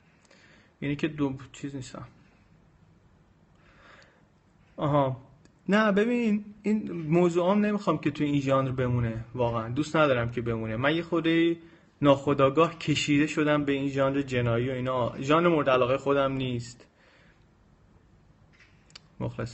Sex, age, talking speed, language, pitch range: male, 30-49, 120 wpm, Persian, 120-145 Hz